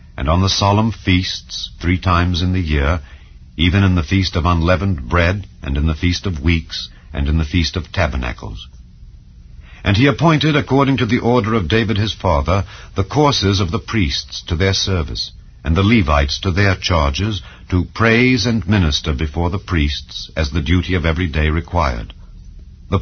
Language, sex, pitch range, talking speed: English, male, 75-110 Hz, 180 wpm